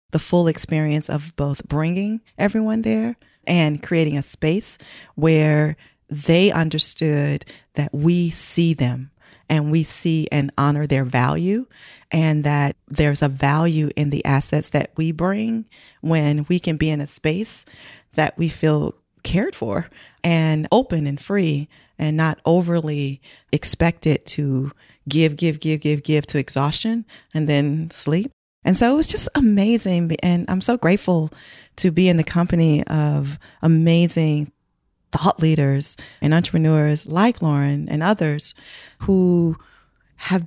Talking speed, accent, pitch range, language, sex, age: 140 wpm, American, 145-170 Hz, English, female, 30-49